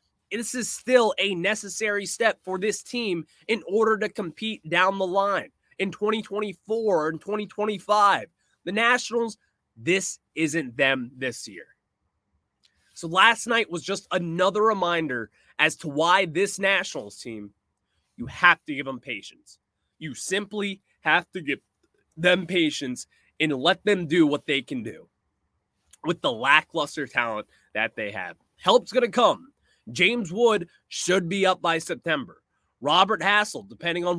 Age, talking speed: 20-39, 145 wpm